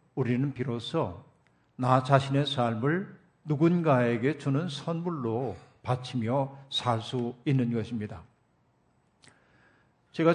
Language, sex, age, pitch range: Korean, male, 50-69, 120-160 Hz